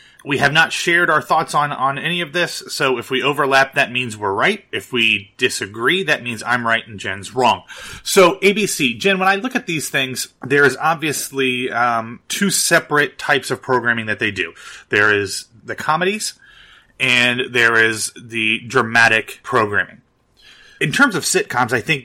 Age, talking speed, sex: 30-49, 180 wpm, male